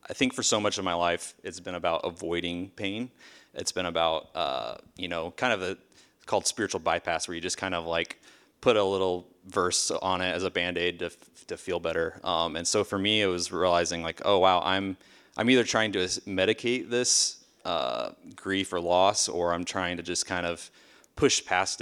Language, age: English, 30-49